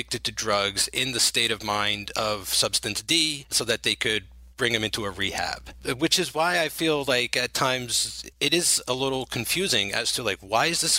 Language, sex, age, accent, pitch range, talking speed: English, male, 30-49, American, 105-135 Hz, 215 wpm